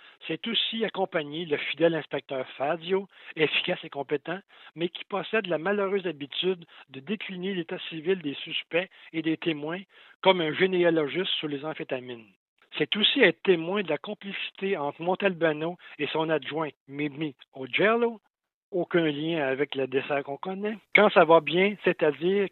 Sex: male